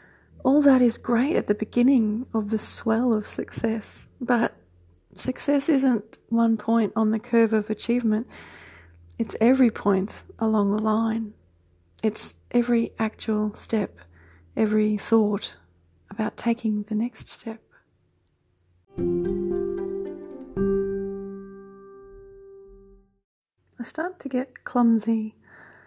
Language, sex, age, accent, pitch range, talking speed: English, female, 30-49, Australian, 205-240 Hz, 100 wpm